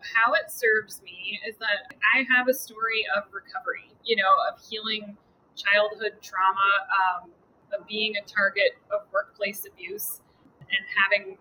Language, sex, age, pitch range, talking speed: English, female, 20-39, 195-240 Hz, 145 wpm